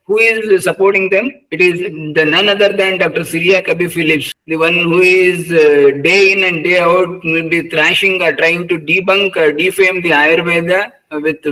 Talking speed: 175 wpm